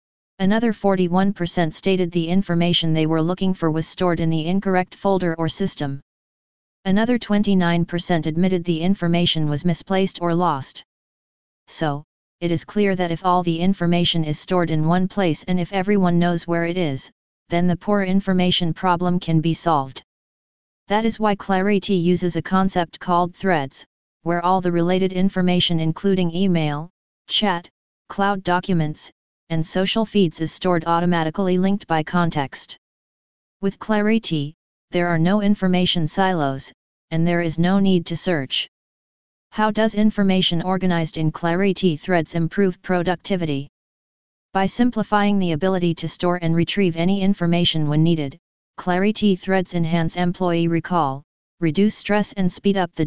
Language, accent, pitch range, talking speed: English, American, 165-190 Hz, 145 wpm